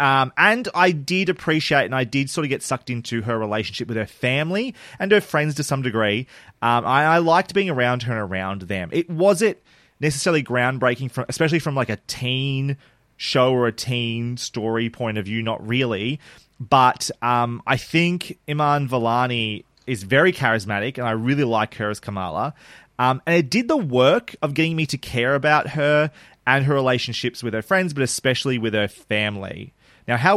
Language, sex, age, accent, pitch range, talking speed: English, male, 30-49, Australian, 115-150 Hz, 190 wpm